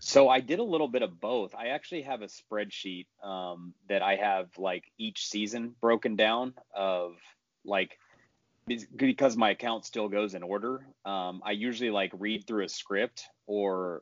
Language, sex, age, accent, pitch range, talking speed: English, male, 30-49, American, 95-115 Hz, 170 wpm